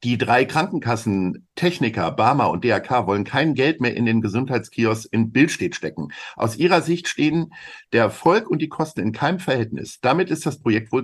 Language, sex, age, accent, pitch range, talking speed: German, male, 50-69, German, 115-165 Hz, 185 wpm